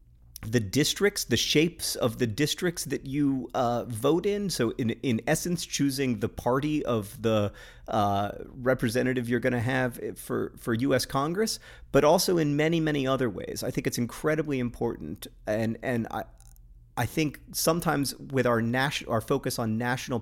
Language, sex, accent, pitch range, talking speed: English, male, American, 110-130 Hz, 165 wpm